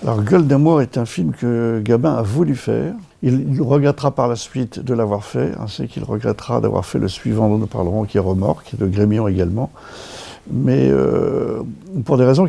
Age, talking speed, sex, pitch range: 50-69, 195 wpm, male, 110-135 Hz